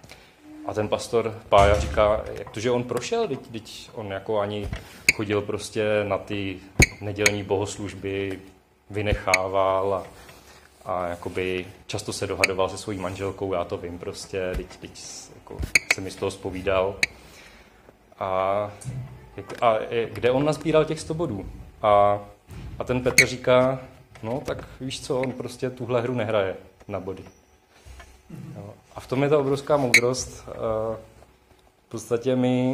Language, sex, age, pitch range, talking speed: Czech, male, 30-49, 95-120 Hz, 140 wpm